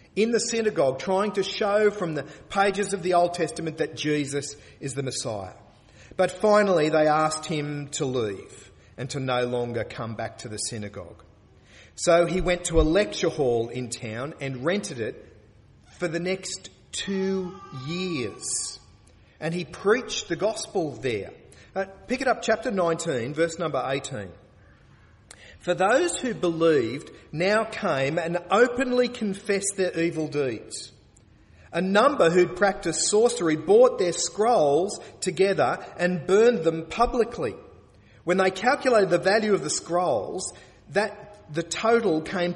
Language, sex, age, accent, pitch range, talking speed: English, male, 40-59, Australian, 125-190 Hz, 145 wpm